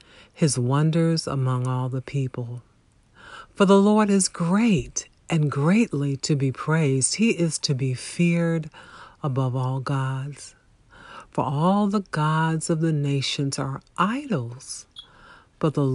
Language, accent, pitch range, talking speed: English, American, 135-180 Hz, 130 wpm